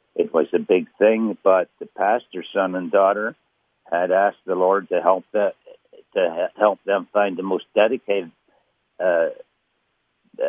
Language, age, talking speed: English, 60-79, 150 wpm